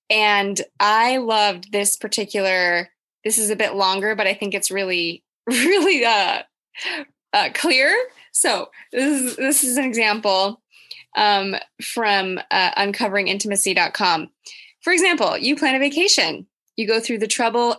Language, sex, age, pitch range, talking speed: English, female, 20-39, 205-280 Hz, 140 wpm